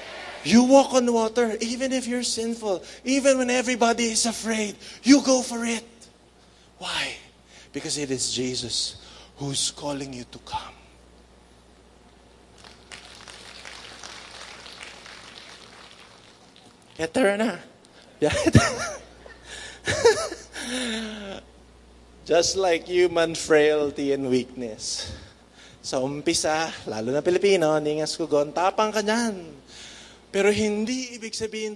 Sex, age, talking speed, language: male, 20-39, 85 wpm, English